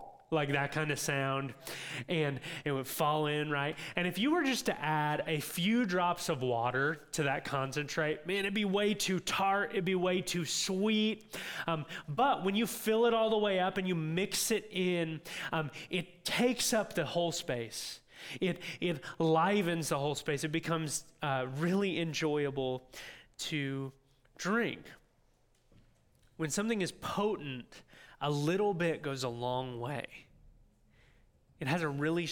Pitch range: 130-180 Hz